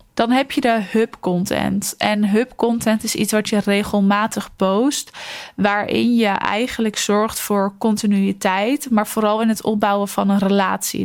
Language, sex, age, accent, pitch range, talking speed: Dutch, female, 20-39, Dutch, 200-225 Hz, 145 wpm